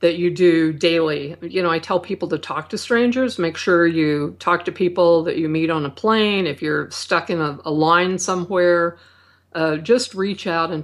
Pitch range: 165-205 Hz